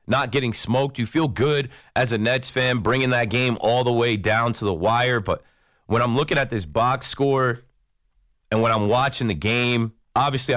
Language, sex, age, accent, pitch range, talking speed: English, male, 30-49, American, 110-135 Hz, 200 wpm